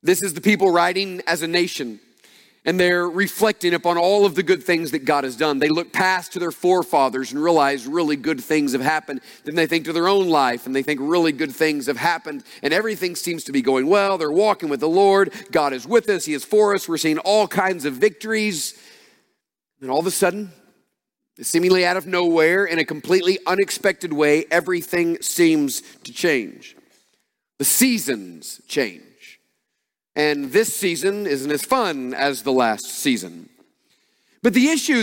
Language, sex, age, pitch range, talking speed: English, male, 40-59, 165-220 Hz, 185 wpm